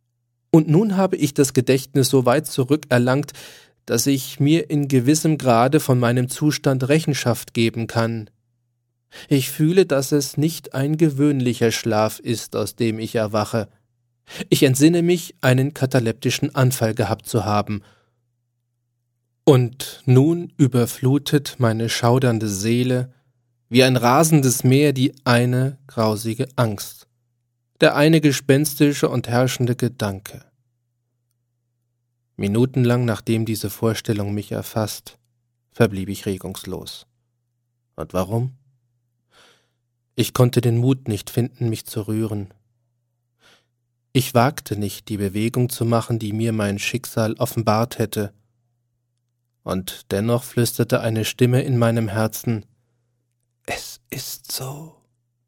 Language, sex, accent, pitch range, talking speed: German, male, German, 115-130 Hz, 115 wpm